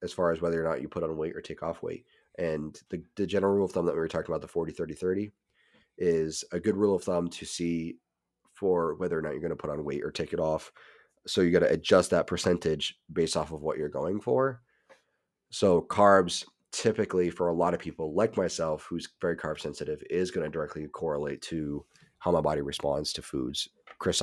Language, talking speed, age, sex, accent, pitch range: English, 225 wpm, 30-49, male, American, 80-90 Hz